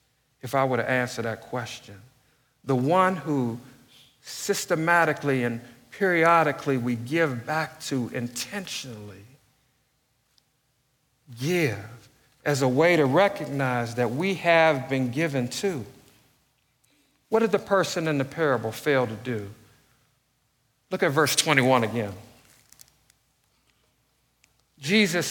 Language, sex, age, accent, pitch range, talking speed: English, male, 50-69, American, 125-160 Hz, 110 wpm